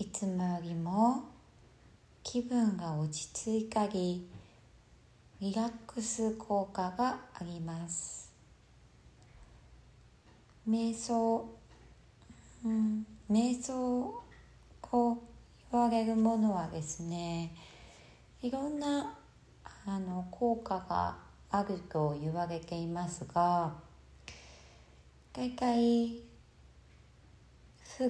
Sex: female